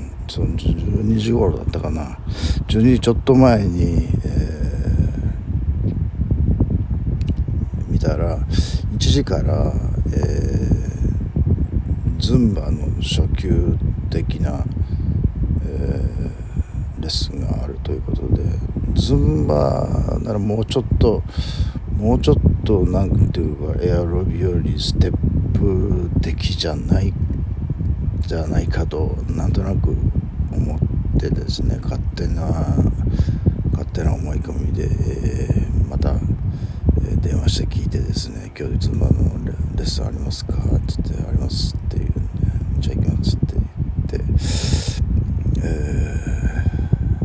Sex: male